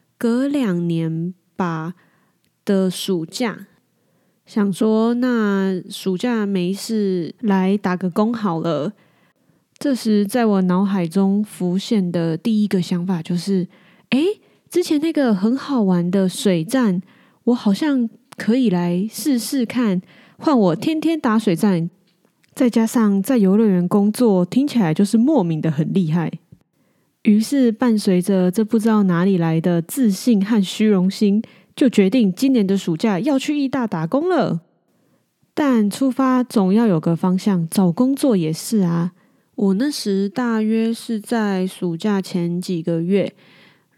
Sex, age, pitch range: female, 20-39, 180-230 Hz